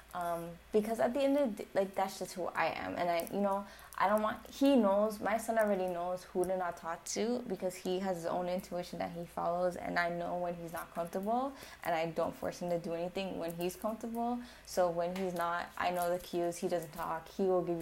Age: 20-39